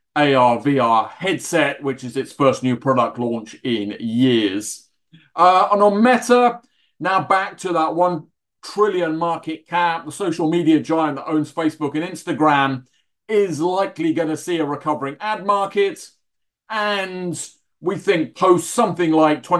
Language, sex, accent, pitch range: English, male, British, 145-185 Hz